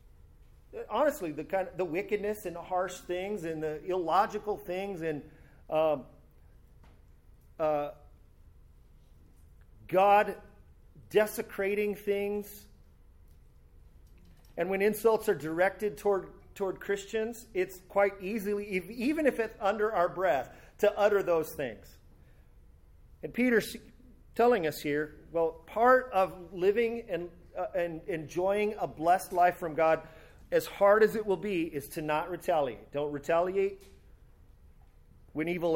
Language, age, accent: English, 40-59, American